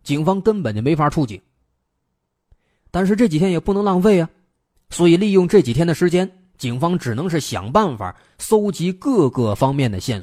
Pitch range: 105-170 Hz